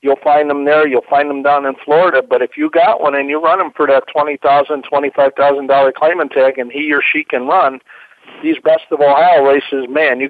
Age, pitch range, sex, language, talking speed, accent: 50-69, 140-170 Hz, male, English, 215 wpm, American